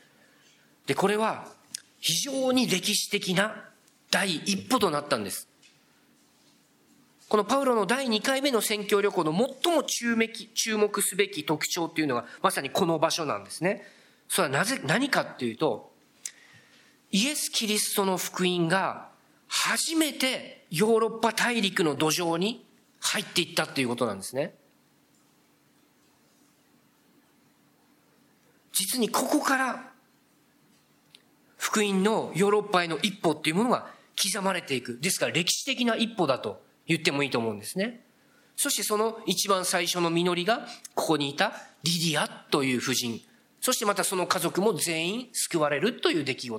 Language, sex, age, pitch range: Japanese, male, 40-59, 170-230 Hz